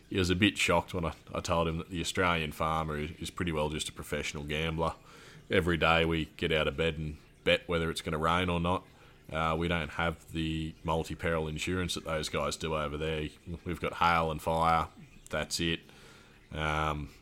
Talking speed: 200 wpm